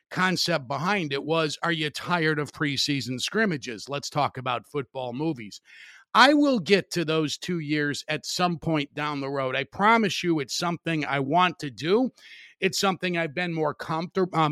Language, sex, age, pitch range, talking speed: English, male, 50-69, 145-180 Hz, 180 wpm